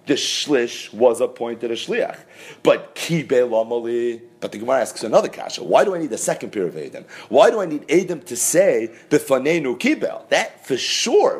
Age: 40-59